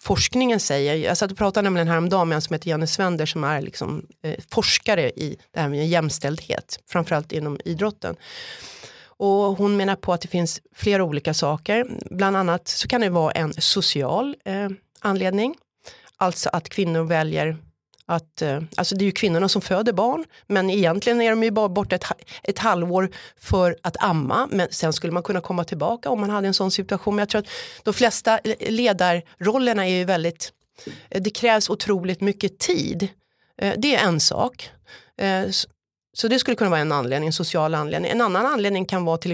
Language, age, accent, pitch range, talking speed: Swedish, 30-49, native, 165-205 Hz, 185 wpm